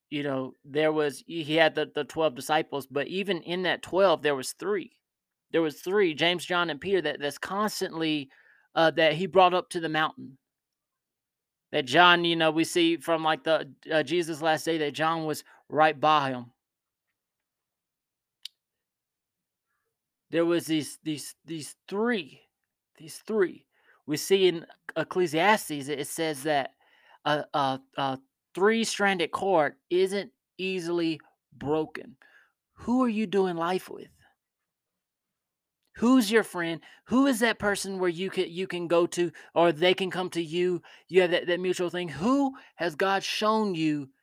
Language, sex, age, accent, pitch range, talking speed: English, male, 30-49, American, 155-215 Hz, 155 wpm